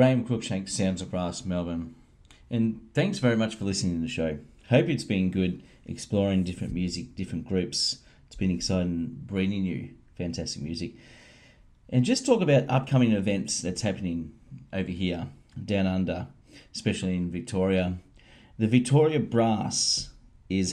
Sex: male